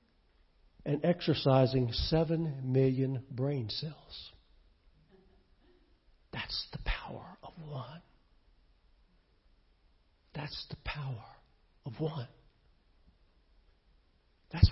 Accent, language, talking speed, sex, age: American, English, 70 wpm, male, 60-79